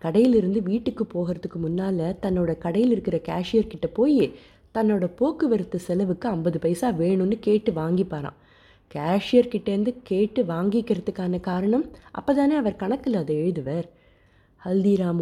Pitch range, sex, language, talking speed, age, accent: 165-215 Hz, female, Tamil, 110 wpm, 30-49, native